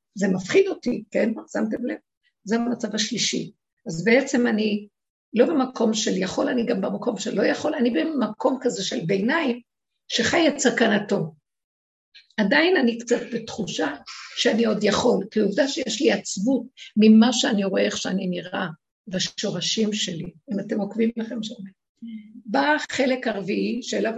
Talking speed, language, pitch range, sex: 145 wpm, Hebrew, 210-275 Hz, female